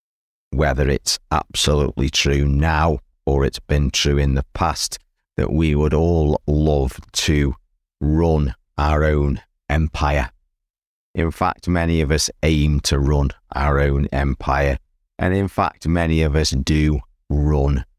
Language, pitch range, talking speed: English, 70-80 Hz, 135 wpm